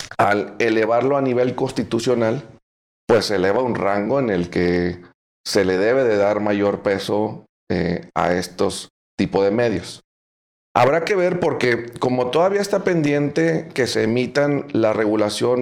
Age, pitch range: 40-59, 100-125 Hz